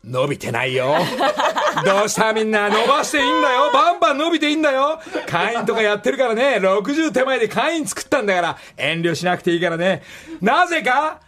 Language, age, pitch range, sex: Japanese, 40-59, 175-230 Hz, male